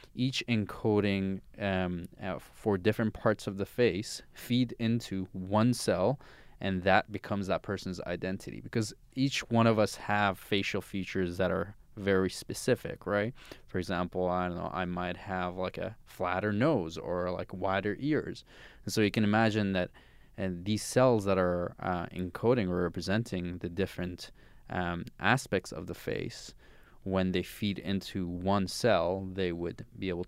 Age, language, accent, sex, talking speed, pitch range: 20-39, English, Canadian, male, 160 wpm, 95-120 Hz